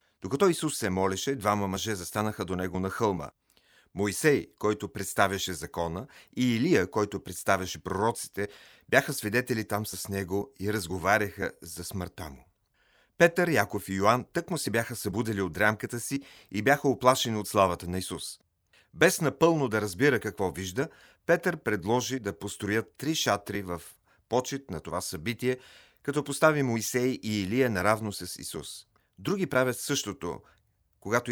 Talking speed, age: 150 wpm, 40-59